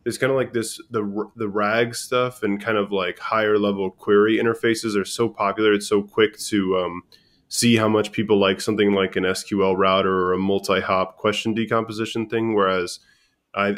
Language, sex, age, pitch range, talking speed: English, male, 10-29, 100-115 Hz, 185 wpm